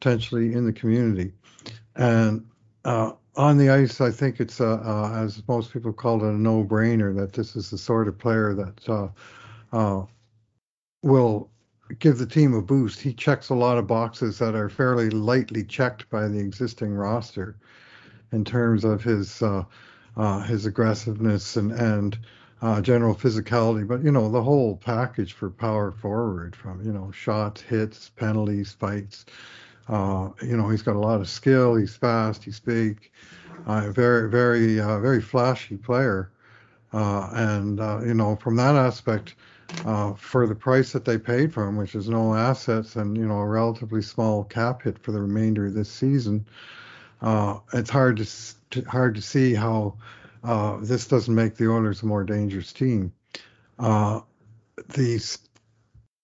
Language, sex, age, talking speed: English, male, 50-69, 170 wpm